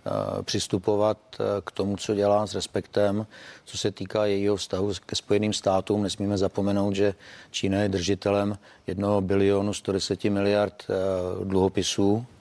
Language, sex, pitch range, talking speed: Czech, male, 95-105 Hz, 125 wpm